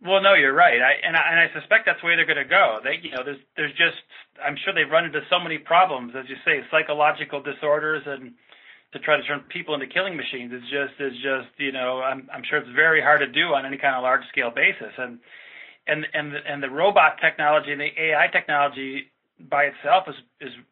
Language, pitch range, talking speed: English, 130-150 Hz, 240 wpm